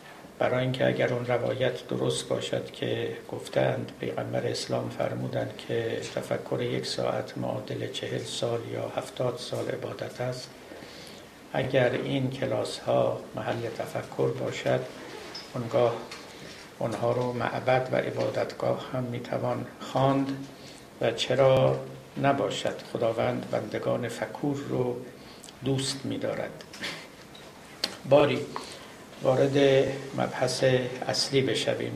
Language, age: Persian, 60-79